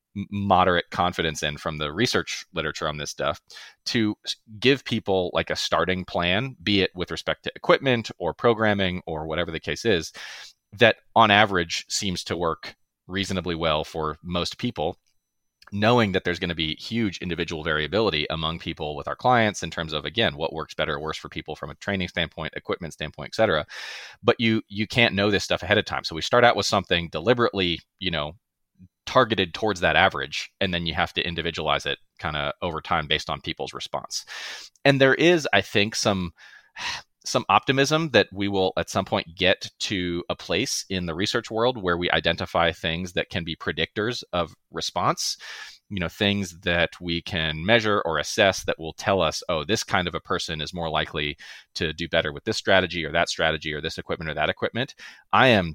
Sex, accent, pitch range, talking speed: male, American, 80-105 Hz, 195 wpm